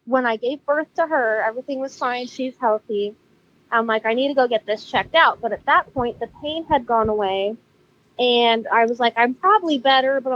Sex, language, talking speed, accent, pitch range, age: female, English, 220 wpm, American, 210-265 Hz, 20-39